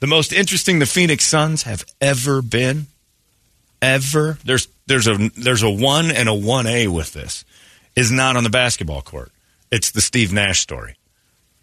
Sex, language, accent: male, English, American